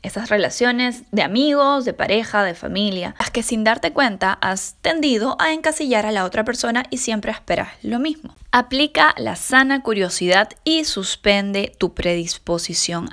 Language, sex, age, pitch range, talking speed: Spanish, female, 10-29, 180-250 Hz, 155 wpm